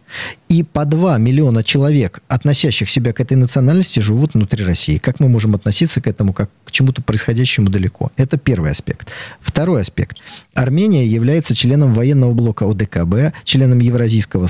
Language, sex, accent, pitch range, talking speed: Russian, male, native, 110-150 Hz, 155 wpm